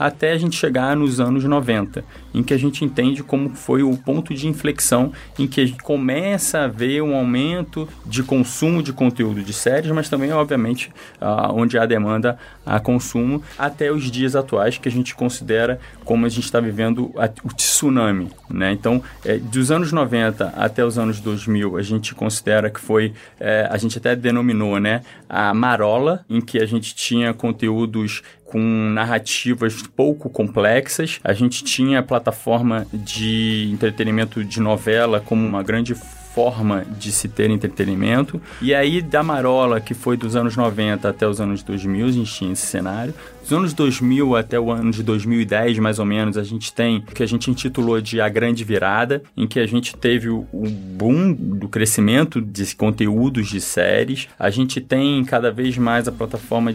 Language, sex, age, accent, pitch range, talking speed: Portuguese, male, 20-39, Brazilian, 110-130 Hz, 175 wpm